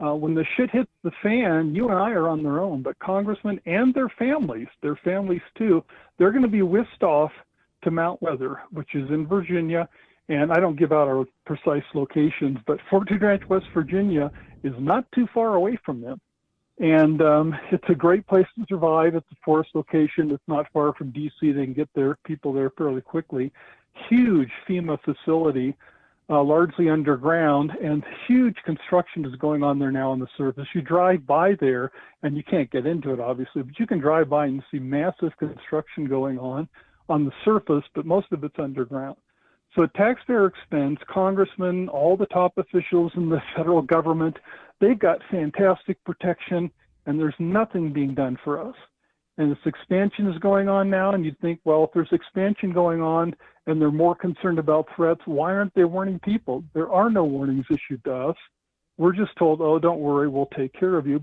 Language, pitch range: English, 150-185 Hz